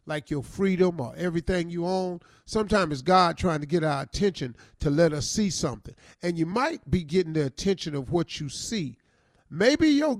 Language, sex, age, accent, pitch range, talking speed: English, male, 40-59, American, 155-205 Hz, 195 wpm